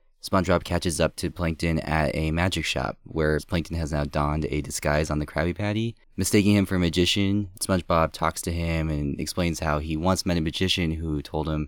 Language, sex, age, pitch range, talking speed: English, male, 20-39, 80-95 Hz, 205 wpm